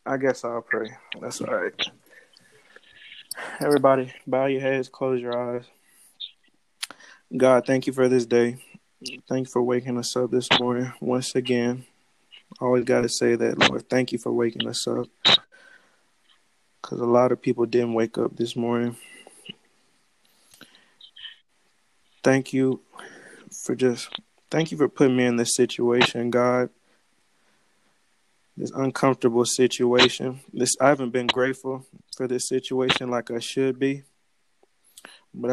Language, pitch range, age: English, 120-130 Hz, 20-39